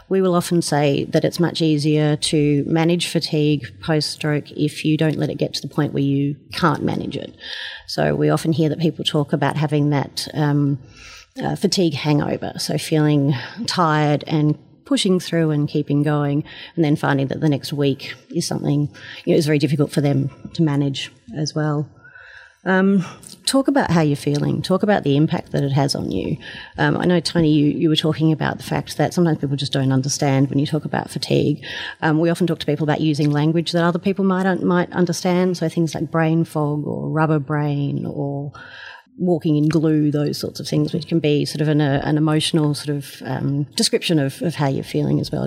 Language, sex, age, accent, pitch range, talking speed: English, female, 30-49, Australian, 145-175 Hz, 205 wpm